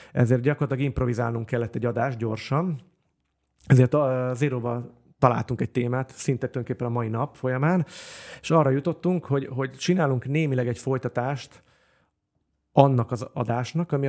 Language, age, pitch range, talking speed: Hungarian, 30-49, 120-150 Hz, 135 wpm